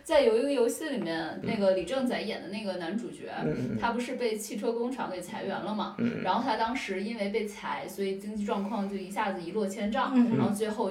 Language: Chinese